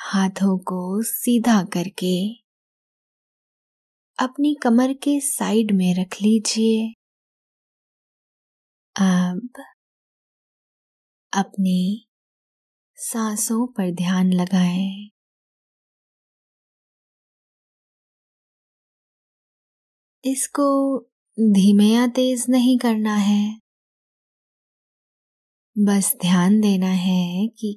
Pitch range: 190-230 Hz